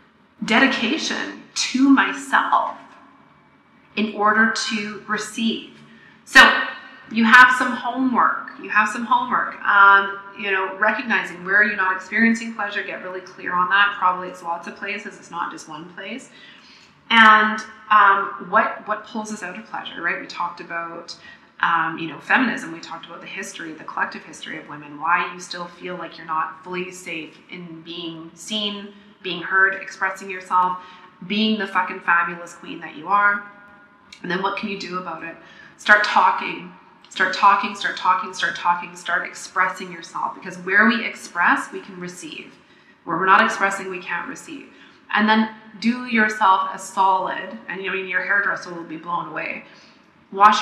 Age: 30-49